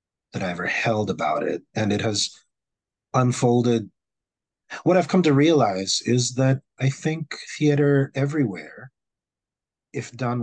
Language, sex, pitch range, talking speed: English, male, 110-135 Hz, 130 wpm